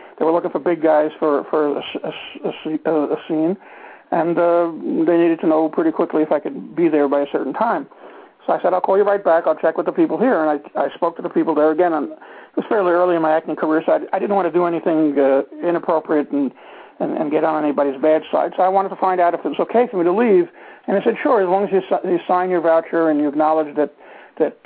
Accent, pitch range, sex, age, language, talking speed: American, 155-185 Hz, male, 60-79, English, 270 wpm